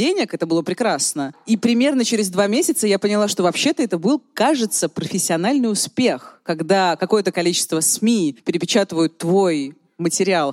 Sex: female